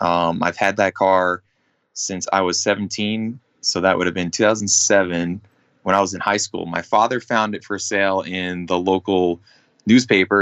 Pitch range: 90-105 Hz